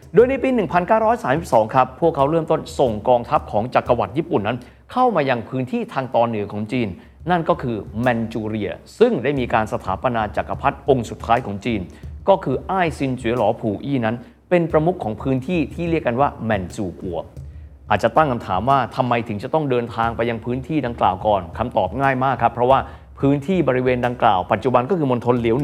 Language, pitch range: Thai, 110-155 Hz